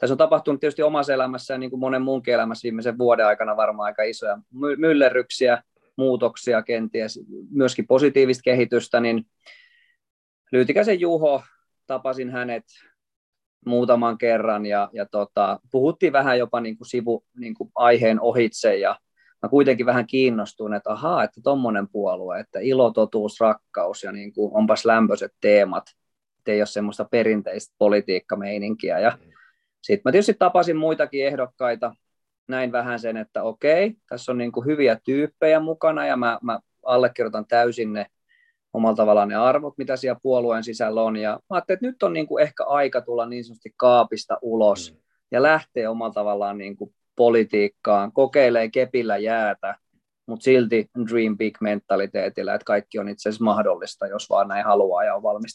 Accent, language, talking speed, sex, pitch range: native, Finnish, 150 wpm, male, 110-140 Hz